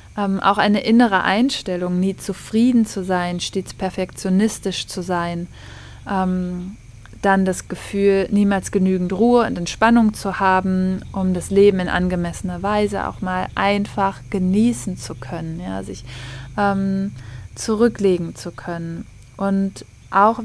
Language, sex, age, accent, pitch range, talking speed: German, female, 20-39, German, 180-205 Hz, 125 wpm